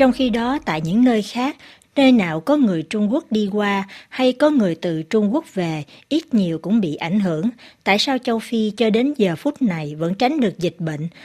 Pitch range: 190-255 Hz